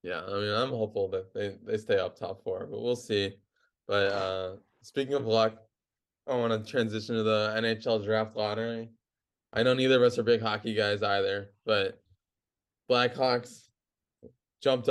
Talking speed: 170 wpm